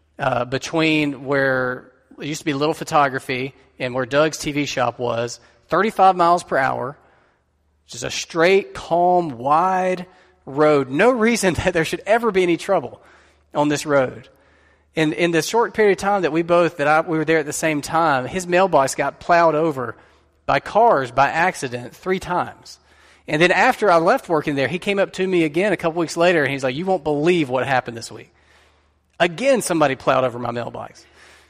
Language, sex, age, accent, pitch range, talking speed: English, male, 30-49, American, 130-175 Hz, 190 wpm